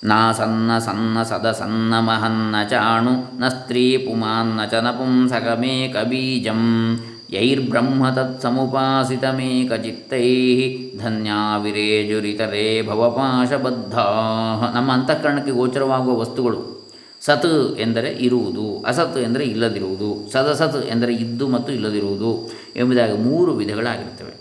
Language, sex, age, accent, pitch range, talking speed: Kannada, male, 20-39, native, 110-130 Hz, 100 wpm